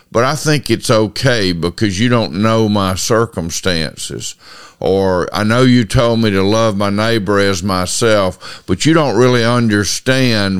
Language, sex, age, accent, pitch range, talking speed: English, male, 50-69, American, 100-120 Hz, 160 wpm